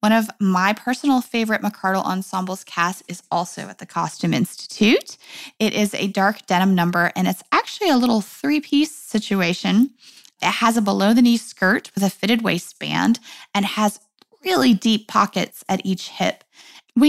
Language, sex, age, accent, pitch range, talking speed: English, female, 20-39, American, 190-260 Hz, 160 wpm